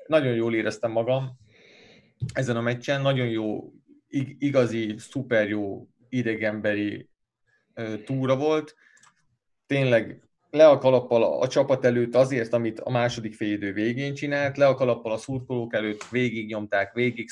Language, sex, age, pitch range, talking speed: Hungarian, male, 30-49, 110-130 Hz, 125 wpm